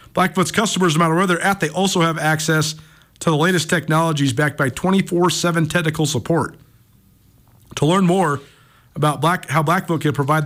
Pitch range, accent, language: 140-180 Hz, American, English